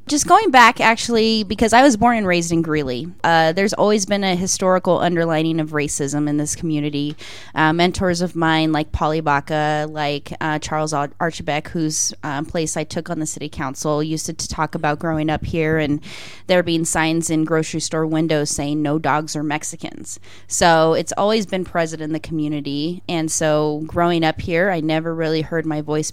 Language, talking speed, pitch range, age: English, 190 wpm, 150-190 Hz, 20-39